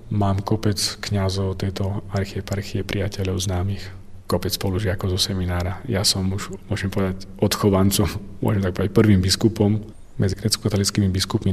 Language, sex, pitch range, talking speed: Slovak, male, 95-110 Hz, 140 wpm